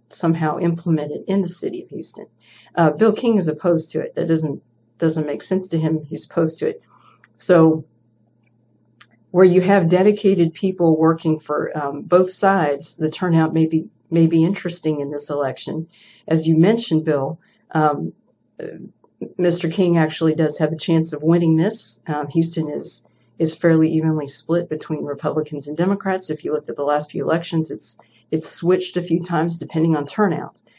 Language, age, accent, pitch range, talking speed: English, 40-59, American, 150-175 Hz, 175 wpm